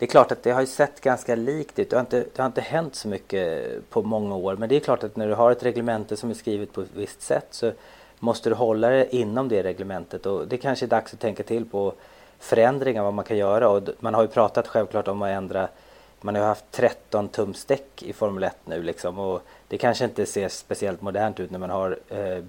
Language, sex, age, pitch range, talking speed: Swedish, male, 30-49, 100-120 Hz, 245 wpm